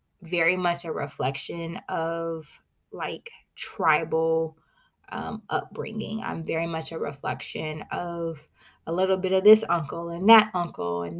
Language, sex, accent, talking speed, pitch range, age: English, female, American, 135 wpm, 160-190 Hz, 20-39